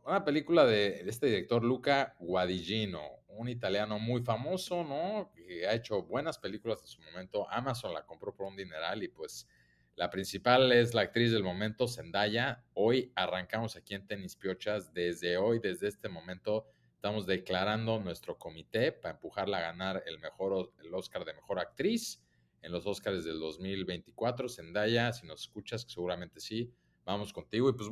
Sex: male